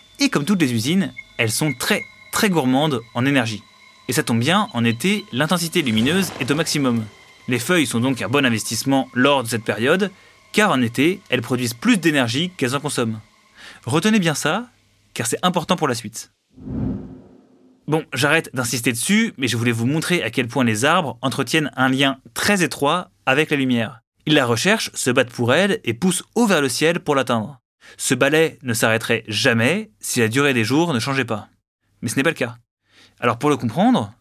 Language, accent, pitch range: French, French, 115-155 Hz